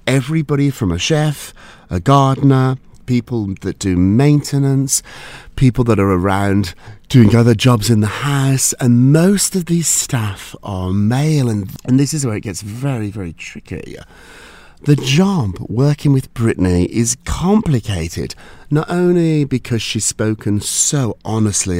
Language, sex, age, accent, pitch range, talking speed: English, male, 40-59, British, 105-160 Hz, 140 wpm